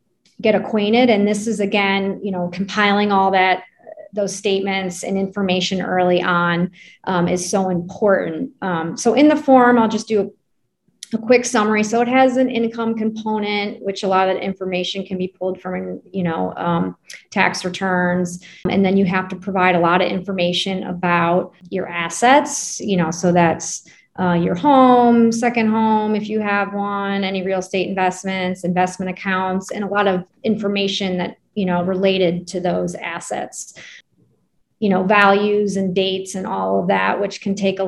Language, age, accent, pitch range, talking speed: English, 30-49, American, 180-205 Hz, 175 wpm